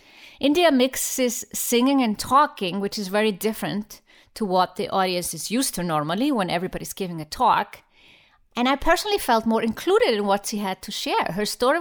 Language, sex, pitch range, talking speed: English, female, 195-255 Hz, 185 wpm